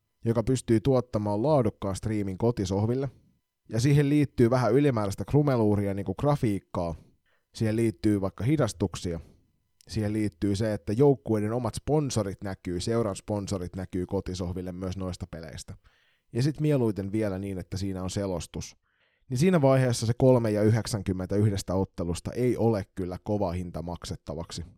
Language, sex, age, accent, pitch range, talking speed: Finnish, male, 20-39, native, 95-125 Hz, 140 wpm